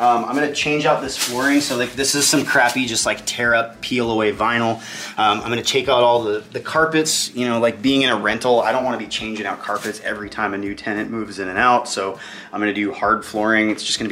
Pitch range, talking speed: 105-130 Hz, 260 wpm